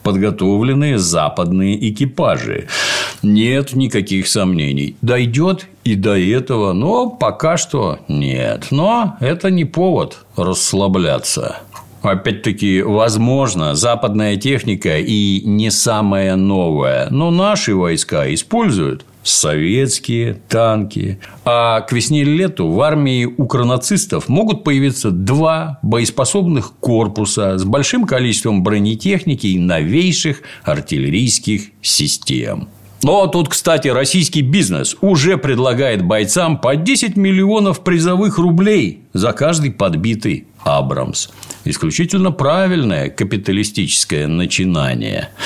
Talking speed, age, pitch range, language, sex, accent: 100 wpm, 60-79, 100-150 Hz, Russian, male, native